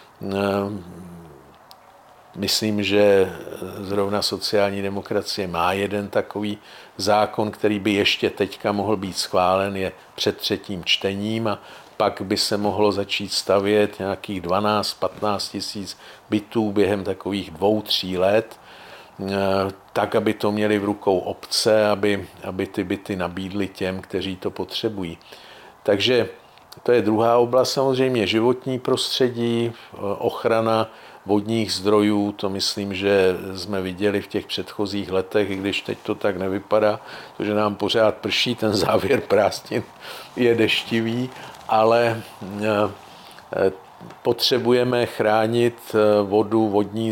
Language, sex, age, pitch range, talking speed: Czech, male, 50-69, 95-110 Hz, 115 wpm